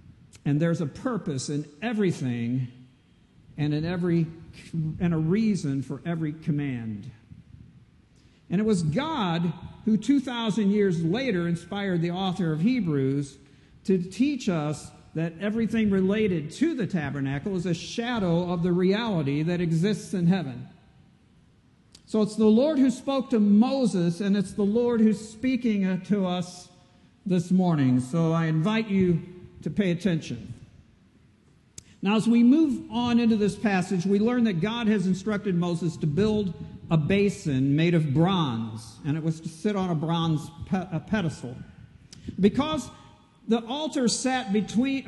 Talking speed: 140 wpm